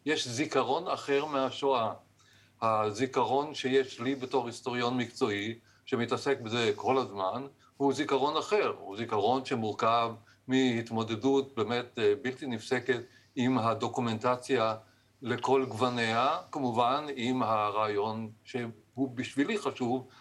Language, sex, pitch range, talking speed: Hebrew, male, 115-135 Hz, 100 wpm